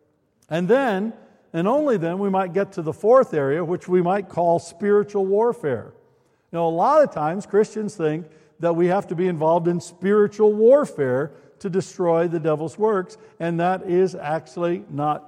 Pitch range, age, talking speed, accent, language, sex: 155-200 Hz, 60-79, 175 wpm, American, English, male